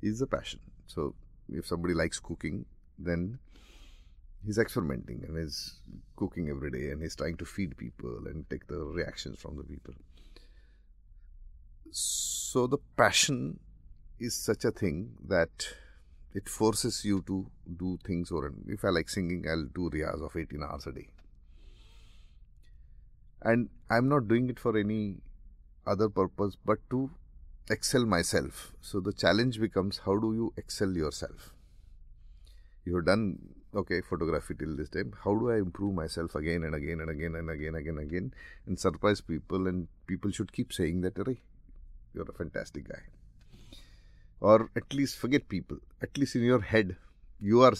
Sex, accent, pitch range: male, Indian, 75-100 Hz